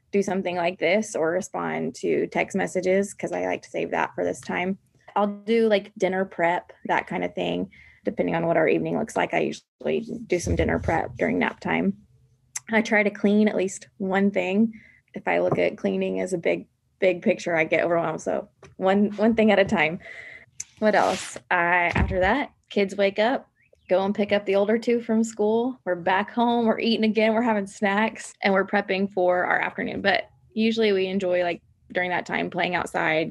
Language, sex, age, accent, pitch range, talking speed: English, female, 20-39, American, 180-210 Hz, 200 wpm